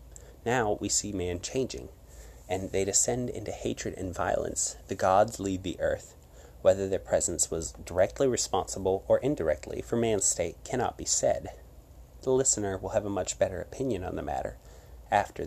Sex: male